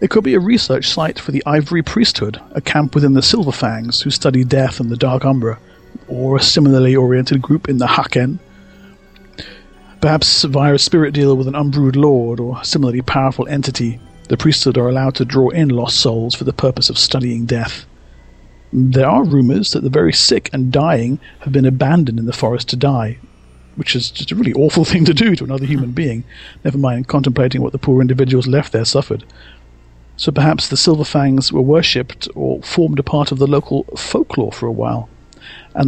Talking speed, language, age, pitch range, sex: 200 wpm, English, 50-69, 120-145 Hz, male